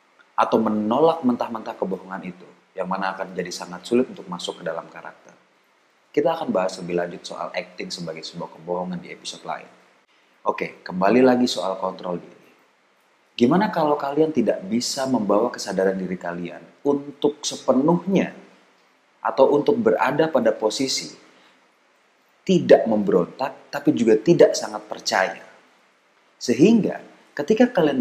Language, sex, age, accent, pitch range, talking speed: Indonesian, male, 30-49, native, 95-145 Hz, 130 wpm